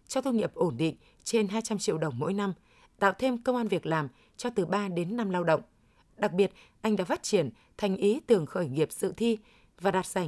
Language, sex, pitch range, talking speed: Vietnamese, female, 175-220 Hz, 235 wpm